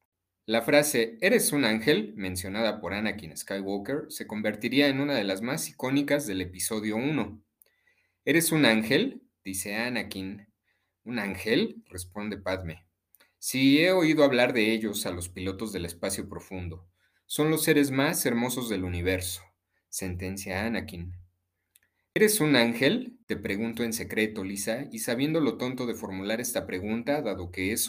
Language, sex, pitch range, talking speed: Spanish, male, 95-130 Hz, 150 wpm